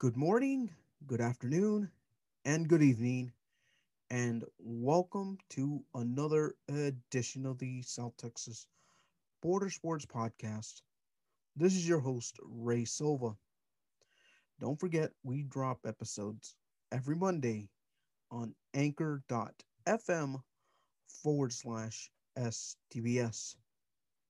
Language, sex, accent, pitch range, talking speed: English, male, American, 120-150 Hz, 90 wpm